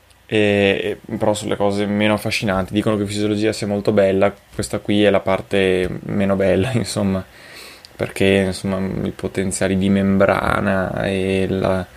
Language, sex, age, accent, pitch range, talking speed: Italian, male, 20-39, native, 95-120 Hz, 145 wpm